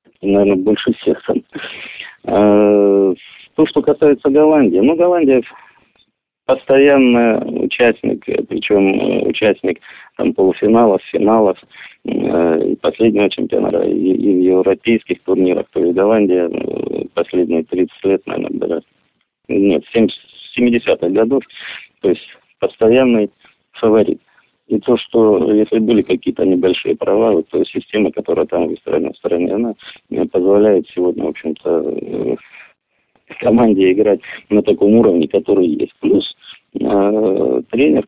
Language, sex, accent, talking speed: Russian, male, native, 105 wpm